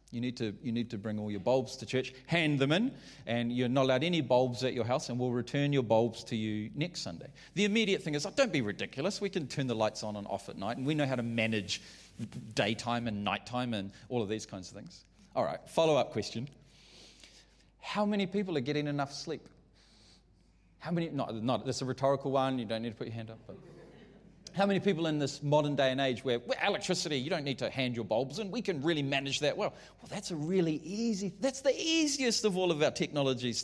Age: 30-49